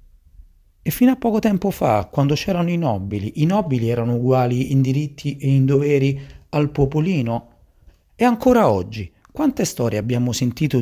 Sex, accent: male, native